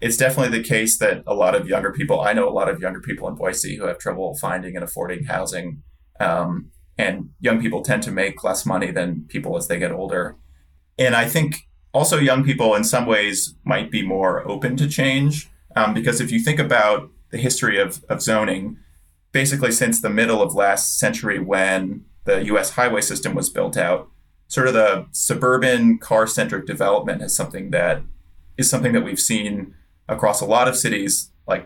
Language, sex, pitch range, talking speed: English, male, 80-130 Hz, 195 wpm